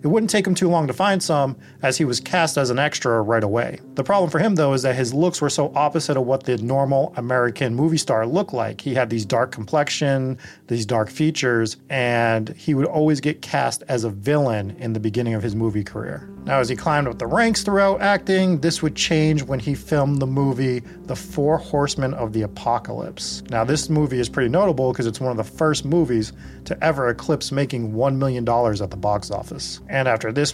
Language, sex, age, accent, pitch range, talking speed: English, male, 30-49, American, 115-145 Hz, 220 wpm